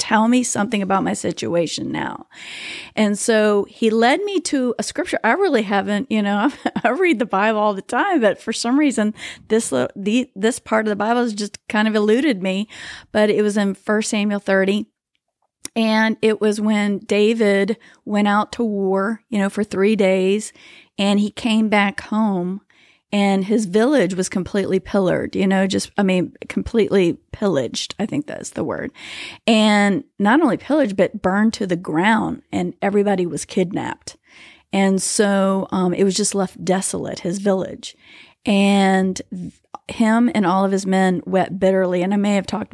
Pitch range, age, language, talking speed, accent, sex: 195-225 Hz, 40-59, English, 175 wpm, American, female